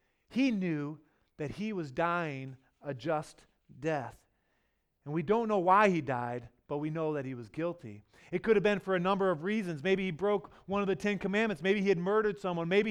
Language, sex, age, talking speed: English, male, 40-59, 215 wpm